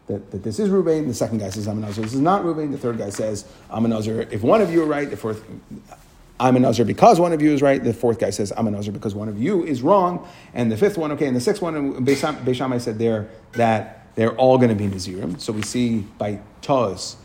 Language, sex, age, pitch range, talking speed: English, male, 40-59, 110-155 Hz, 275 wpm